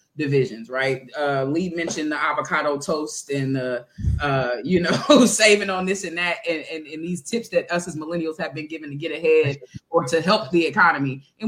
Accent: American